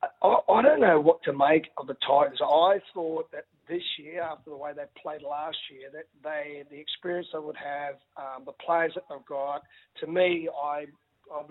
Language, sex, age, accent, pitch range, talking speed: English, male, 40-59, Australian, 145-180 Hz, 205 wpm